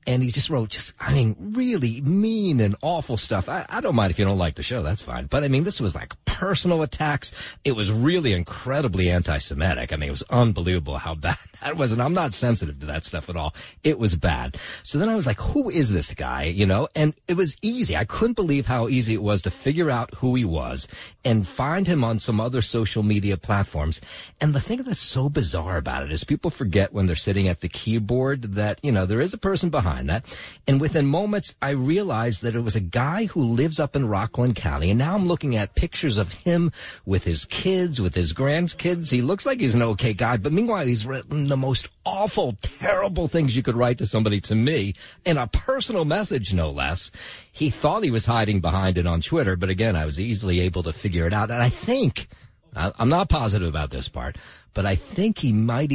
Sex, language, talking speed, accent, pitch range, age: male, English, 225 wpm, American, 95-145 Hz, 40-59